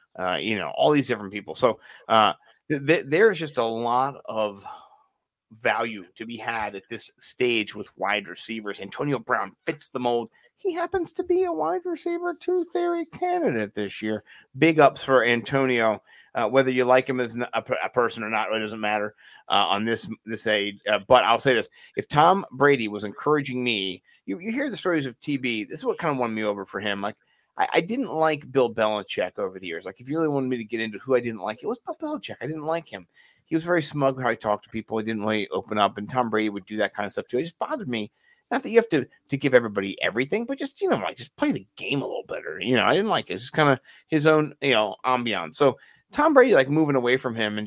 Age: 30-49